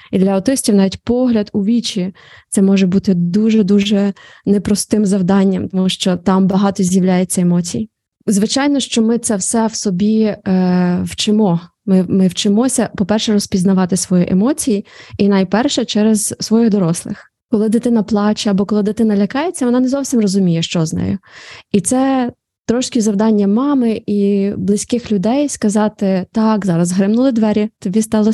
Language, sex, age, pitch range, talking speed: Ukrainian, female, 20-39, 195-235 Hz, 150 wpm